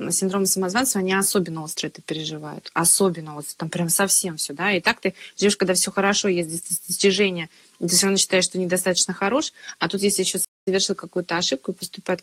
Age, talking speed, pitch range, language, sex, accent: 20-39, 195 wpm, 175-205 Hz, Russian, female, native